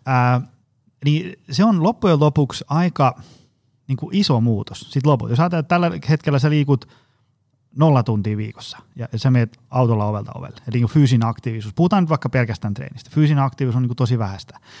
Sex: male